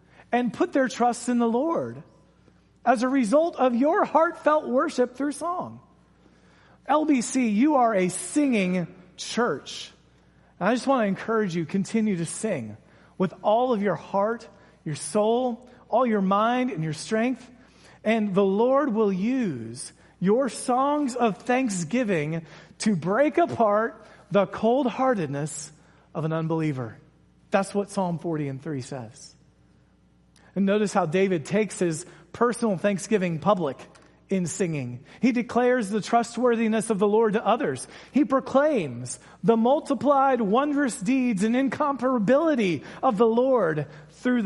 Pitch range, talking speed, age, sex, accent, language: 175-245 Hz, 135 wpm, 40-59, male, American, English